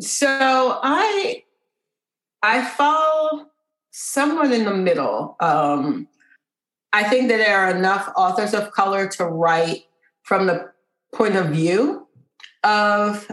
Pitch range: 175-235 Hz